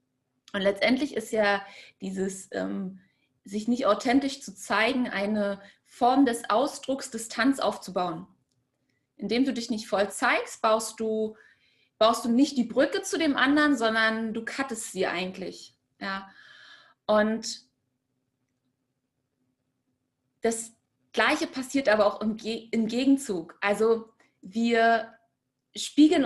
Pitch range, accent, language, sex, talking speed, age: 200-260 Hz, German, German, female, 105 wpm, 20-39